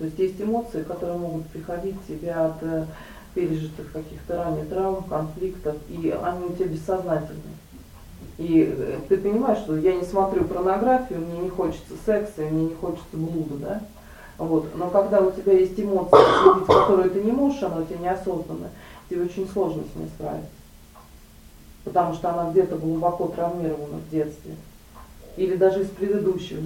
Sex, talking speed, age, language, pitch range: female, 160 wpm, 30-49, Russian, 155-185 Hz